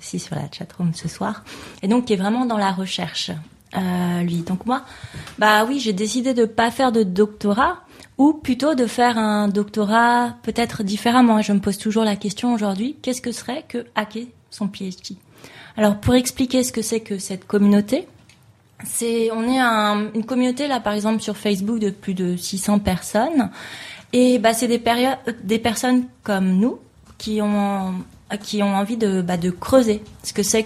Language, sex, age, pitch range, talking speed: French, female, 20-39, 190-240 Hz, 190 wpm